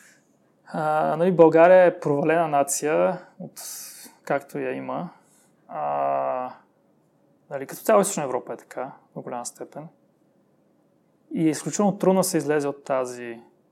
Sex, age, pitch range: male, 20-39, 130-165 Hz